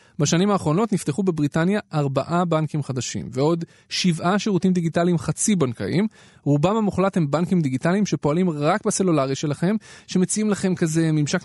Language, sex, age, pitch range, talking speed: Hebrew, male, 20-39, 135-185 Hz, 135 wpm